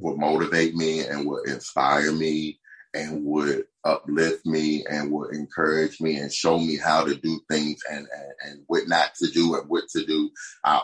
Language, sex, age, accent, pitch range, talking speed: English, male, 30-49, American, 75-95 Hz, 190 wpm